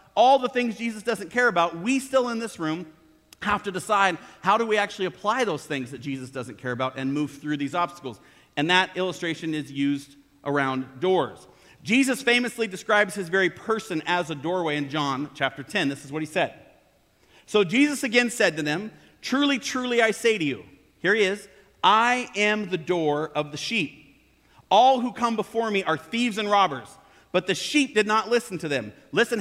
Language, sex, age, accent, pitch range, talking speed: English, male, 40-59, American, 160-230 Hz, 200 wpm